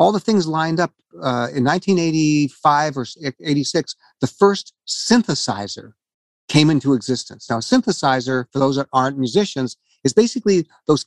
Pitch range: 130-185 Hz